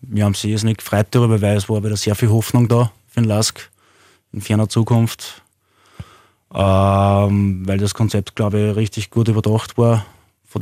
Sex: male